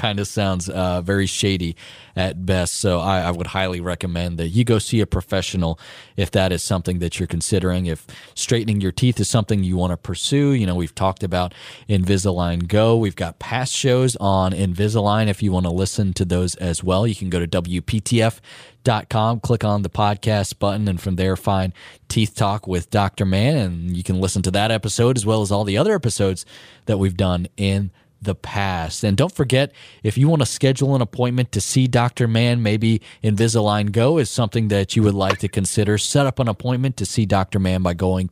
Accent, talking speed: American, 210 wpm